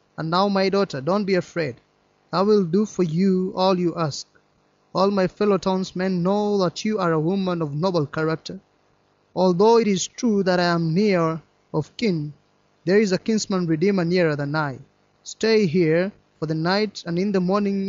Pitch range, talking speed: 160-200 Hz, 180 wpm